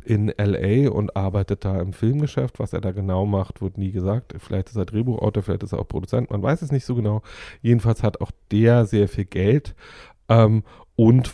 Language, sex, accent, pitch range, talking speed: German, male, German, 95-115 Hz, 205 wpm